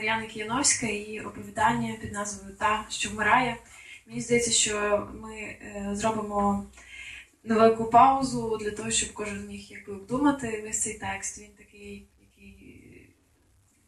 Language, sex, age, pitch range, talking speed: Ukrainian, female, 20-39, 190-220 Hz, 120 wpm